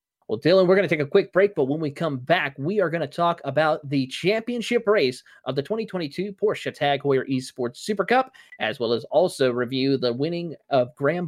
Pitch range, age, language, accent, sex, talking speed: 135-175 Hz, 30-49, English, American, male, 220 wpm